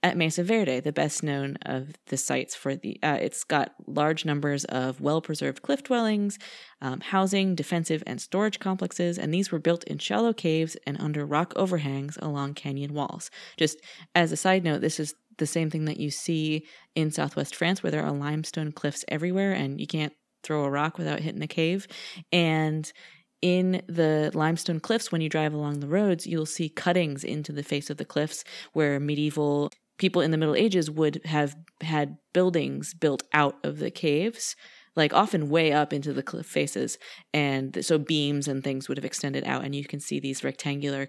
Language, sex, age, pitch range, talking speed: English, female, 30-49, 145-175 Hz, 190 wpm